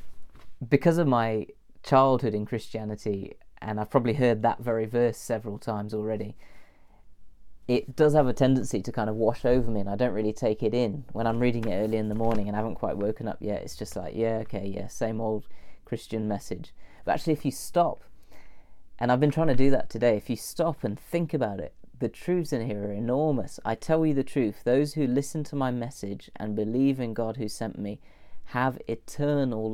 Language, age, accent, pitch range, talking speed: English, 30-49, British, 105-130 Hz, 210 wpm